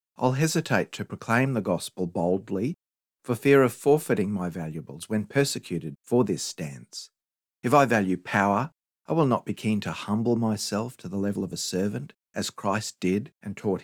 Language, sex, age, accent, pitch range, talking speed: English, male, 50-69, Australian, 95-125 Hz, 180 wpm